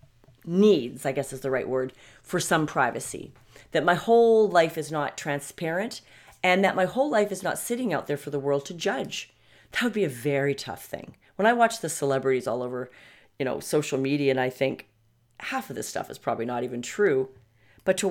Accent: American